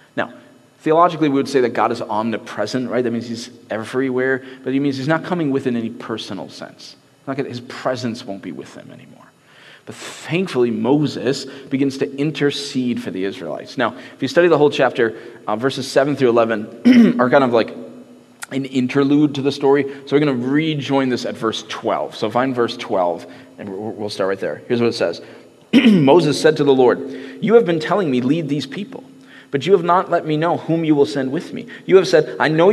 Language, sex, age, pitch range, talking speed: English, male, 30-49, 125-165 Hz, 210 wpm